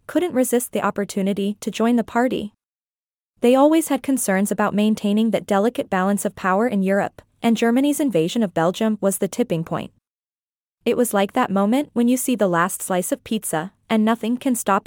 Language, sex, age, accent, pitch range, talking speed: English, female, 20-39, American, 200-250 Hz, 190 wpm